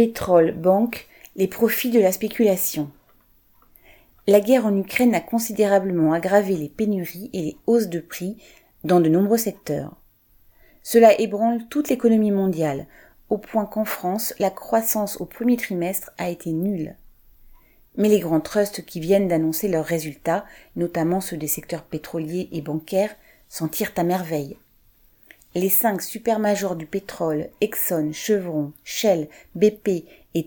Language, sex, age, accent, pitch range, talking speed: French, female, 40-59, French, 165-210 Hz, 140 wpm